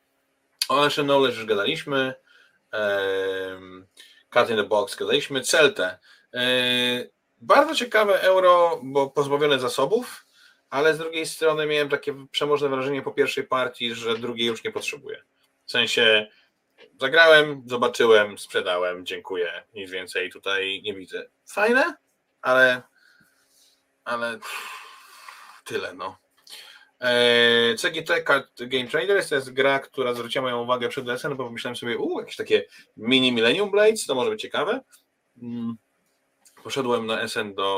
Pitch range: 110-165 Hz